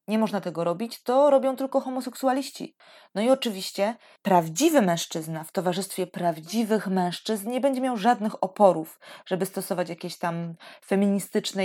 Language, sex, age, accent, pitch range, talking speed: Polish, female, 20-39, native, 180-235 Hz, 140 wpm